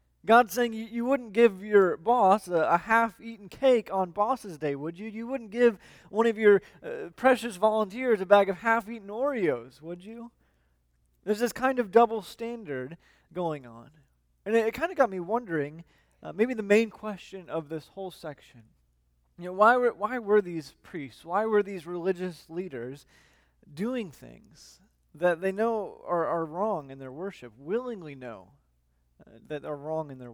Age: 20-39